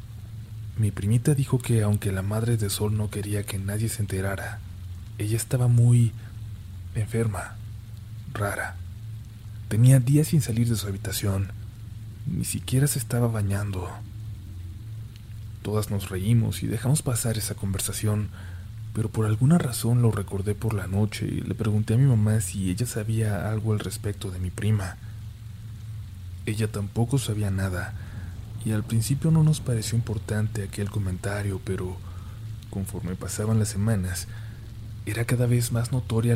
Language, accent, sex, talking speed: Spanish, Mexican, male, 145 wpm